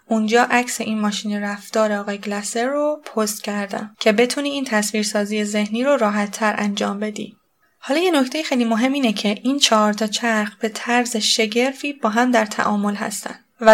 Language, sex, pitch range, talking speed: Persian, female, 210-235 Hz, 180 wpm